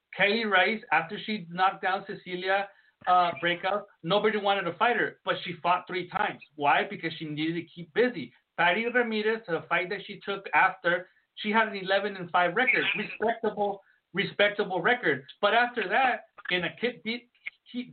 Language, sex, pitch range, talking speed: English, male, 160-205 Hz, 170 wpm